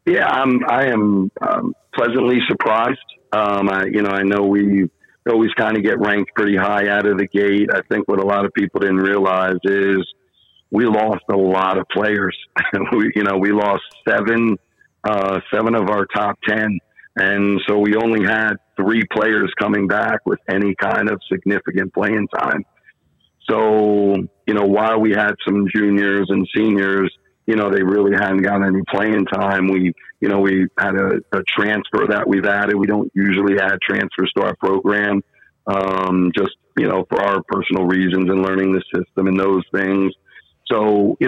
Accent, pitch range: American, 95-105 Hz